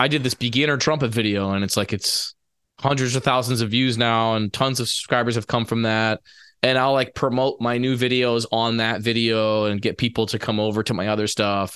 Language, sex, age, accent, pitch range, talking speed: English, male, 20-39, American, 110-135 Hz, 225 wpm